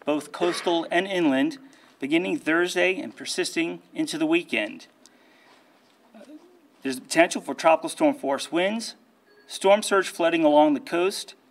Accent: American